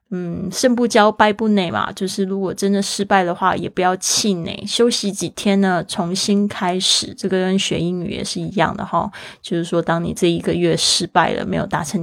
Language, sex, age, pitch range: Chinese, female, 20-39, 190-220 Hz